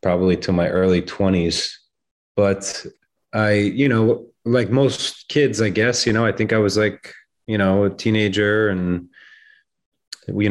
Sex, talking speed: male, 155 wpm